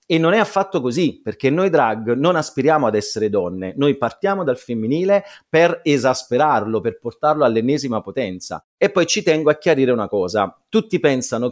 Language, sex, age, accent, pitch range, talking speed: Italian, male, 40-59, native, 115-160 Hz, 170 wpm